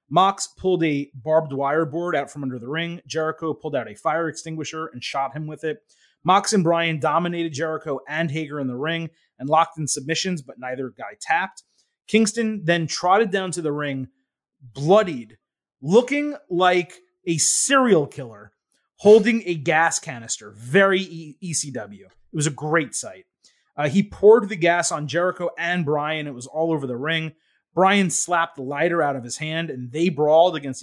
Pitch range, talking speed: 150-185 Hz, 175 wpm